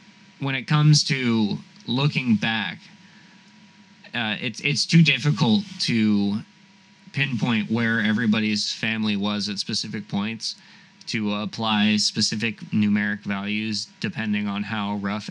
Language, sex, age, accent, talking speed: English, male, 20-39, American, 115 wpm